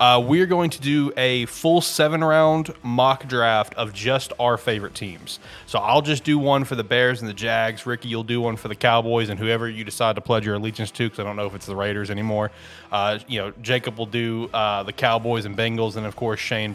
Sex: male